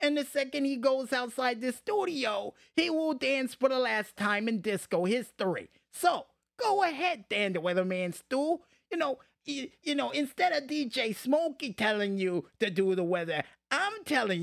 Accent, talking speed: American, 165 wpm